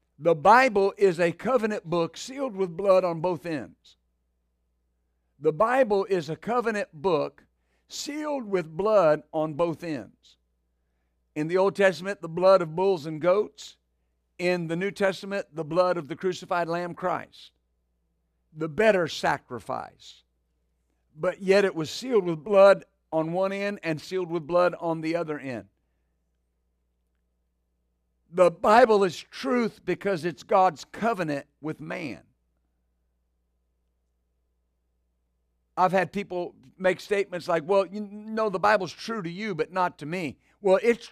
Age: 50-69